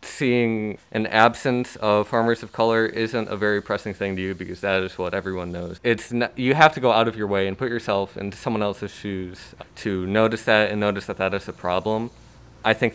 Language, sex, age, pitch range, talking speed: English, male, 20-39, 95-110 Hz, 225 wpm